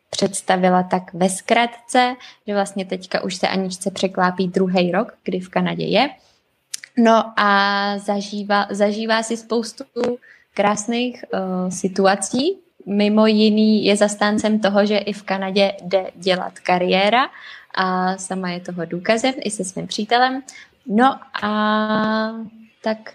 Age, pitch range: 20-39, 190-230 Hz